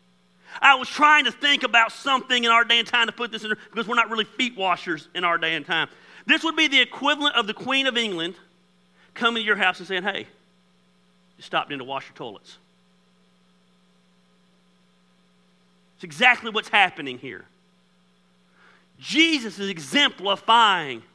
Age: 40-59